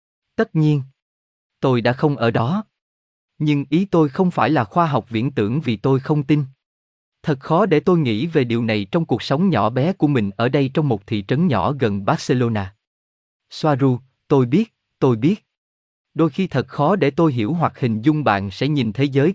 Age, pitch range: 20-39, 115-160 Hz